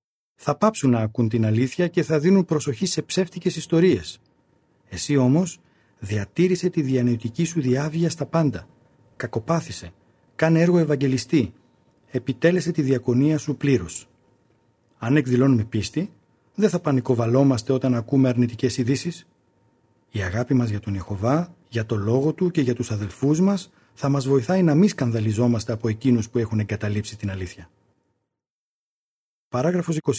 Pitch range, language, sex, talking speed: 115-165 Hz, Greek, male, 140 wpm